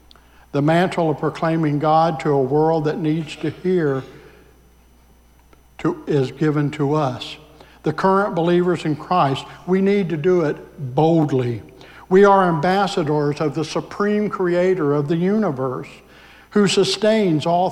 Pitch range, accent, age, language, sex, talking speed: 140-180 Hz, American, 60-79, English, male, 135 wpm